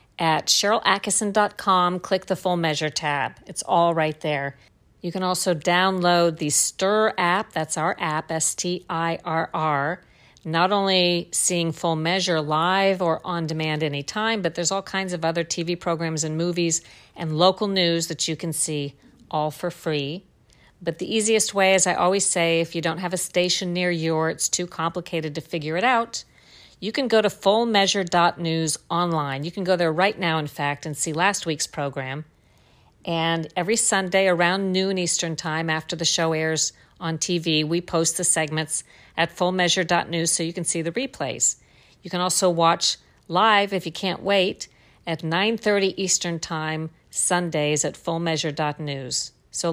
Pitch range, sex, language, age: 160-185 Hz, female, English, 50-69